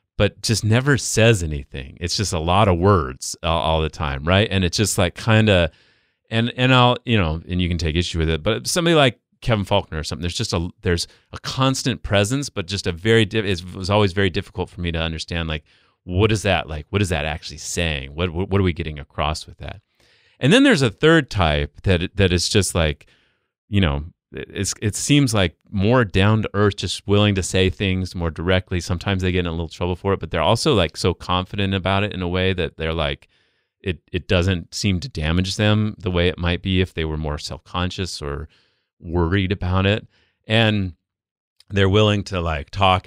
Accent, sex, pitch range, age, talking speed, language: American, male, 85-105 Hz, 30-49, 220 wpm, English